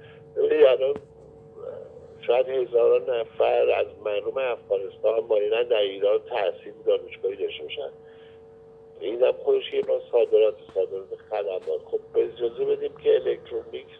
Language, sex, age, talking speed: Persian, male, 50-69, 120 wpm